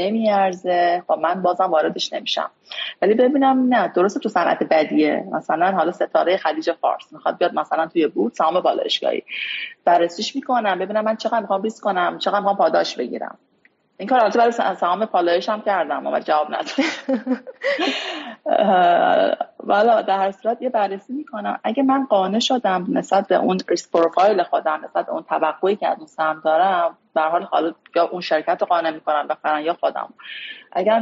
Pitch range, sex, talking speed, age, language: 170-245 Hz, female, 155 wpm, 30-49, Persian